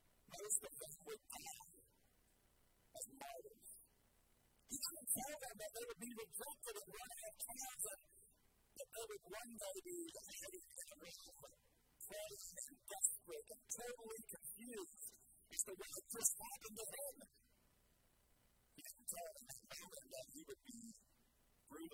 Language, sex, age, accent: English, female, 50-69, American